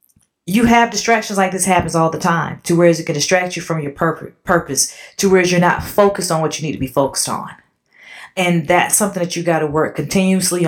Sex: female